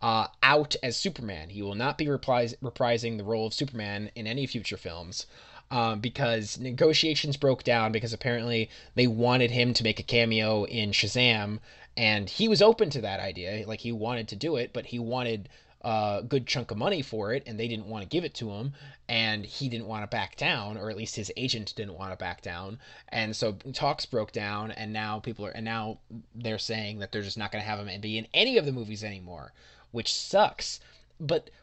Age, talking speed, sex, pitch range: 20-39, 215 wpm, male, 105-135 Hz